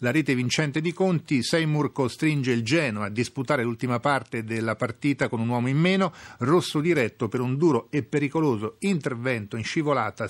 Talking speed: 175 wpm